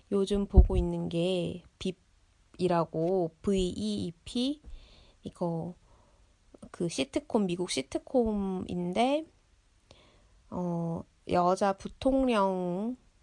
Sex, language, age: female, Korean, 20-39